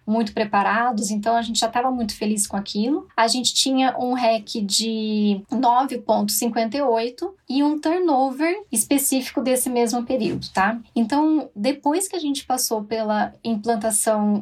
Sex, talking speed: female, 140 wpm